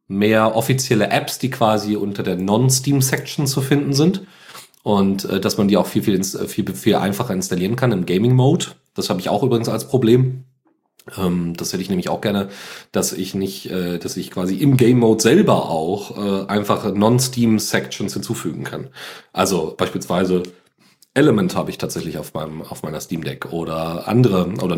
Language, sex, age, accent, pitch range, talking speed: German, male, 40-59, German, 90-120 Hz, 170 wpm